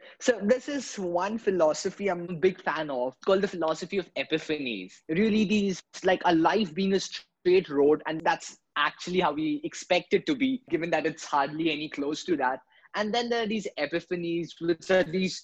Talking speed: 190 wpm